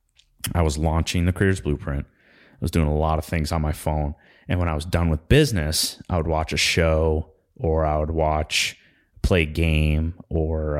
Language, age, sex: English, 30-49, male